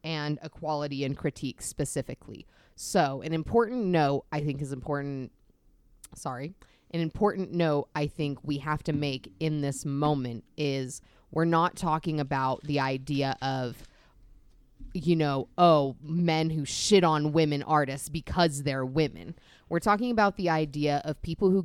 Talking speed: 150 wpm